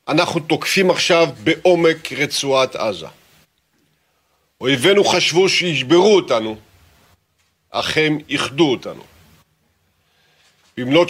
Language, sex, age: Hebrew, male, 50-69